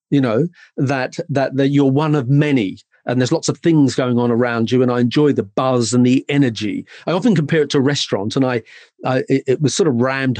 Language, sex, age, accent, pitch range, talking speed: English, male, 40-59, British, 120-150 Hz, 240 wpm